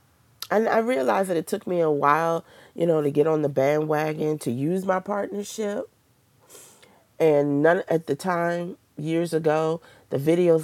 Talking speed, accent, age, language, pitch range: 165 wpm, American, 40-59, English, 130-180 Hz